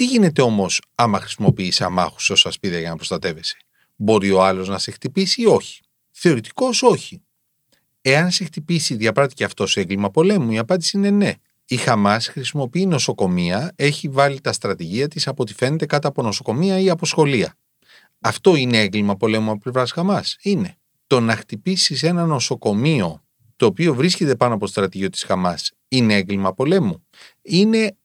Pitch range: 110-175 Hz